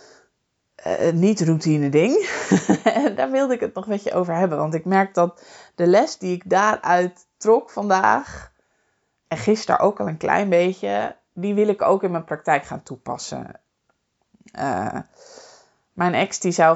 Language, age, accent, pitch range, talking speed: English, 20-39, Dutch, 150-195 Hz, 160 wpm